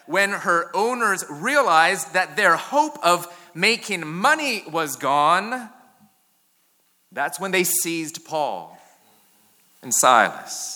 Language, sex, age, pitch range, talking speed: English, male, 30-49, 170-230 Hz, 105 wpm